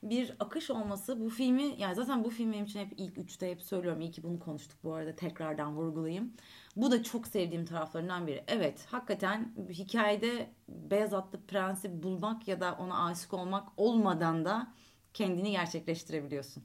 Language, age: Turkish, 30-49